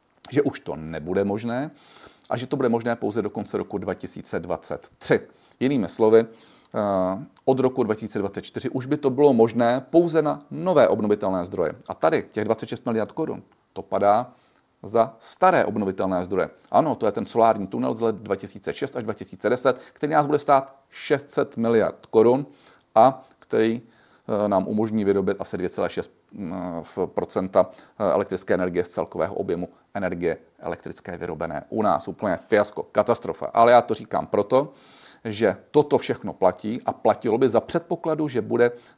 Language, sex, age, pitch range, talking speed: Czech, male, 40-59, 105-135 Hz, 150 wpm